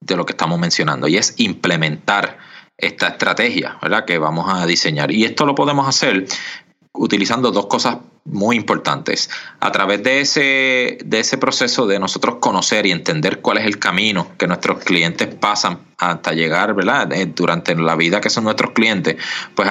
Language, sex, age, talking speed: Spanish, male, 30-49, 170 wpm